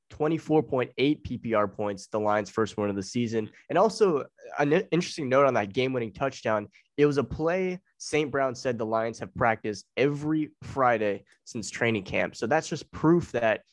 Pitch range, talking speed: 110-130 Hz, 180 wpm